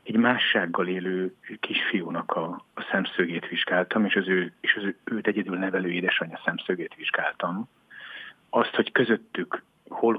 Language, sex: Hungarian, male